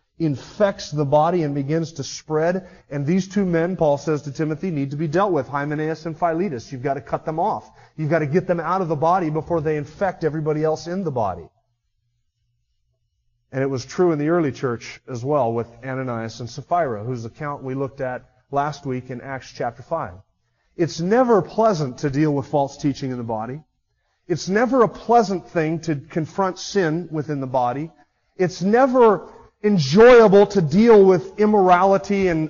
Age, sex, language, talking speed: 30-49, male, English, 185 wpm